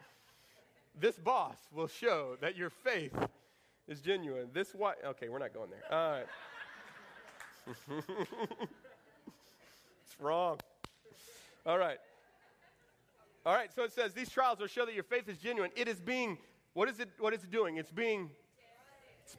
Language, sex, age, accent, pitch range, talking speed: English, male, 30-49, American, 170-260 Hz, 150 wpm